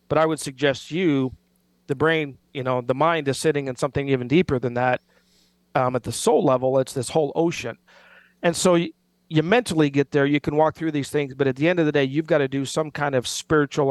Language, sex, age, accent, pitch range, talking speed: English, male, 40-59, American, 125-150 Hz, 240 wpm